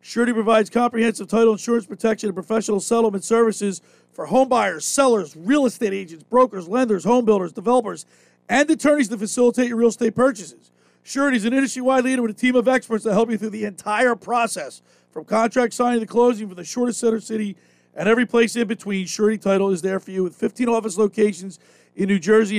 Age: 50-69